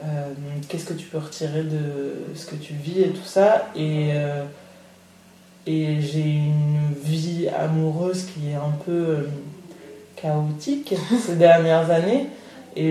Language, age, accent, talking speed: French, 20-39, French, 140 wpm